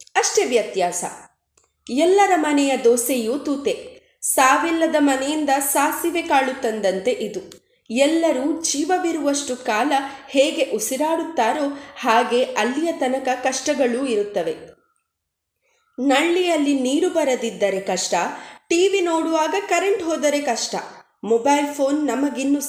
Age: 20-39